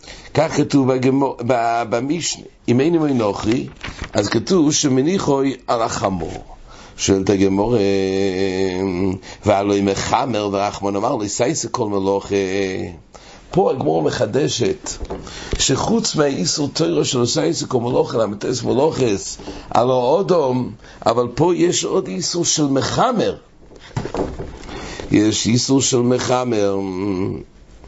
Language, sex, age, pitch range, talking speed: English, male, 60-79, 100-140 Hz, 90 wpm